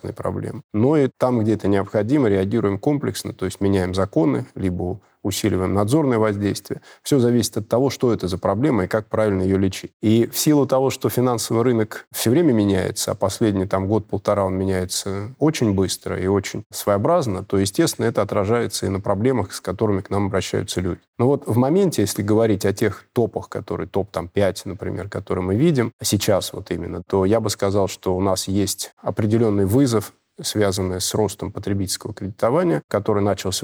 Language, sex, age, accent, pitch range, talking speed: Russian, male, 20-39, native, 95-115 Hz, 175 wpm